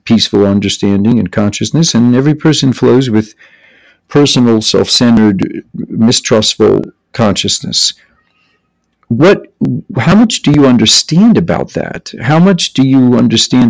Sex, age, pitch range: male, 50-69, 100-135 Hz